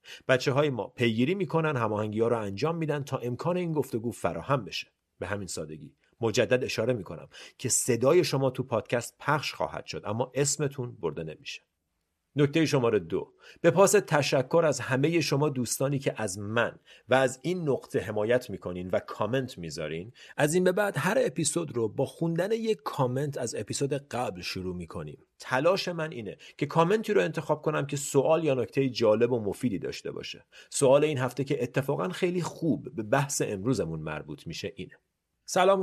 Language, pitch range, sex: Persian, 105-155 Hz, male